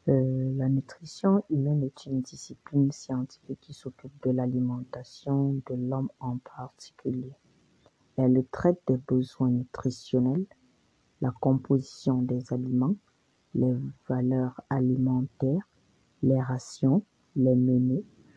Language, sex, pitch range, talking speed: French, female, 125-140 Hz, 105 wpm